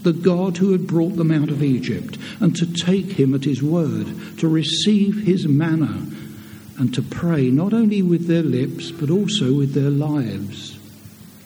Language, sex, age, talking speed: English, male, 60-79, 175 wpm